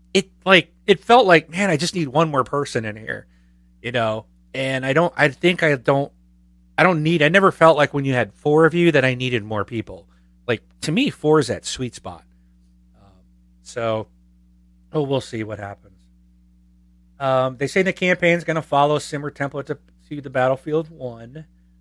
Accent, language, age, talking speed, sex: American, English, 30-49, 200 wpm, male